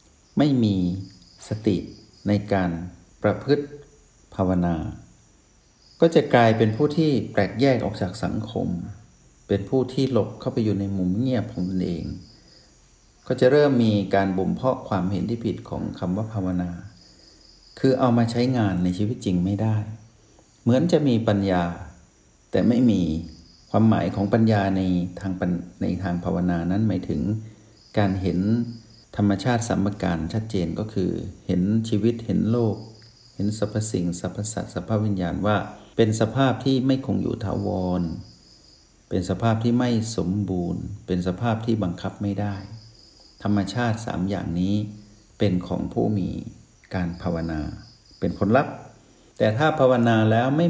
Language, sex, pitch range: Thai, male, 90-115 Hz